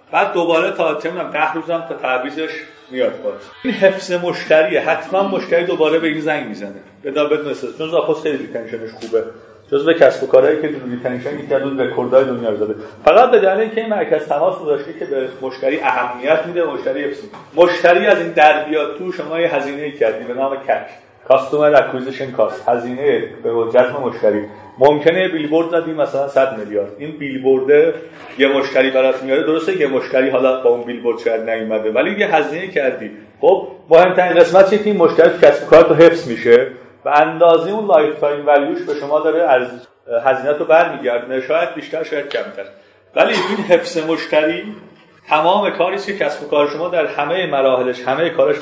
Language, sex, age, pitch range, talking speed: Persian, male, 40-59, 130-180 Hz, 175 wpm